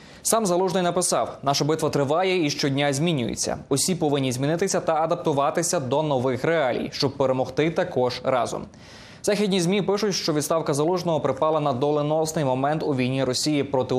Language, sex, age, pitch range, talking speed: Ukrainian, male, 20-39, 140-175 Hz, 150 wpm